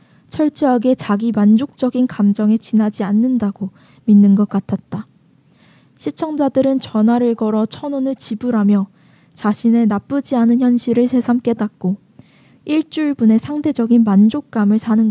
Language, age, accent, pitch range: Korean, 10-29, native, 205-245 Hz